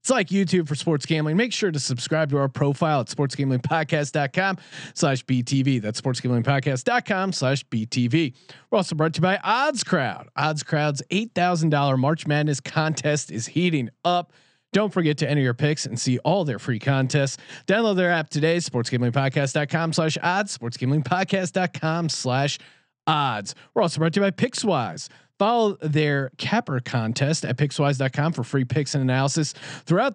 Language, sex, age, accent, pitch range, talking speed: English, male, 30-49, American, 135-175 Hz, 155 wpm